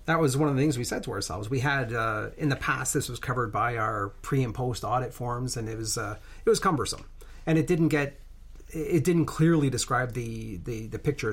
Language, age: English, 40-59